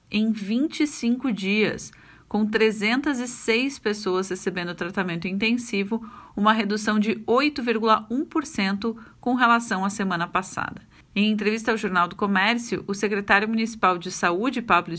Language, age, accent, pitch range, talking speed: Portuguese, 40-59, Brazilian, 195-230 Hz, 120 wpm